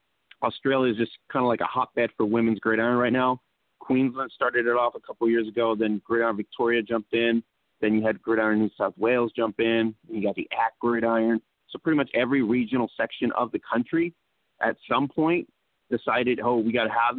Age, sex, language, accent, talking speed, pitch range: 30-49, male, English, American, 205 wpm, 105-120 Hz